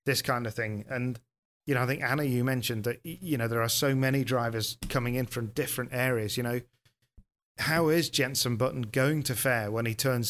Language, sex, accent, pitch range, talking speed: English, male, British, 115-135 Hz, 215 wpm